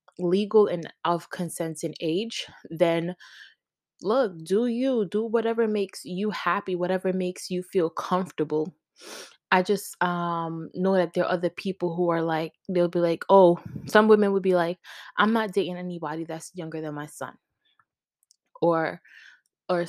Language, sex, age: English, female, 20-39